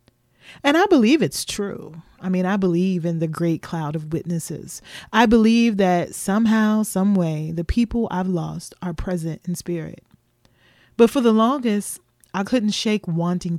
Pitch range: 155-190 Hz